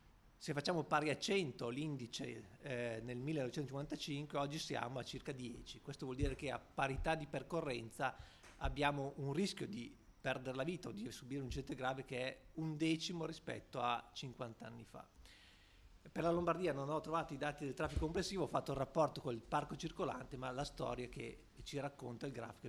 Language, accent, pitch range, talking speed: Italian, native, 125-155 Hz, 180 wpm